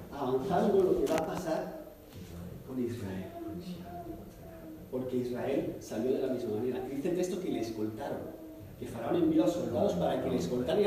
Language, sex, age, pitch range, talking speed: Spanish, male, 40-59, 130-205 Hz, 175 wpm